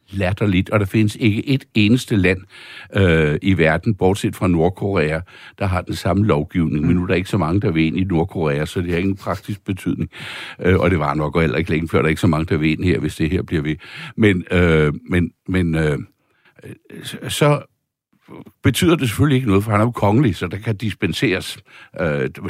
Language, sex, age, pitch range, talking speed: Danish, male, 60-79, 90-120 Hz, 215 wpm